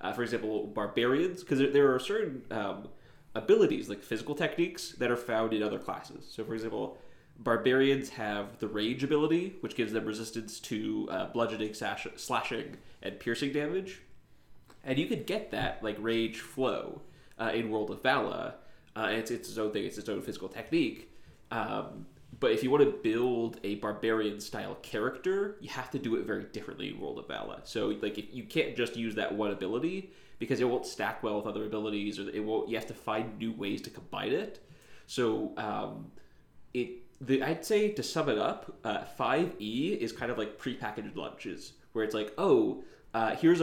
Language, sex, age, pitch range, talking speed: English, male, 20-39, 110-140 Hz, 195 wpm